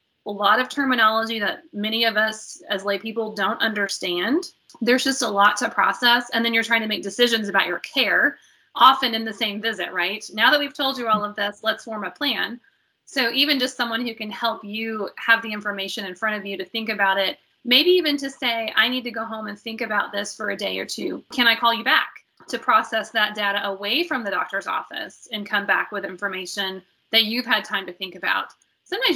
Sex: female